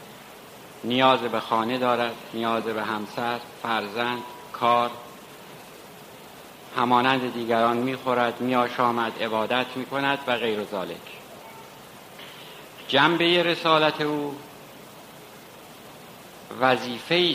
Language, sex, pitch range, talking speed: Persian, male, 110-135 Hz, 80 wpm